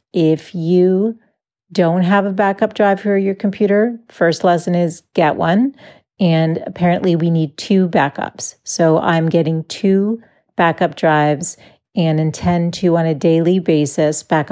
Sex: female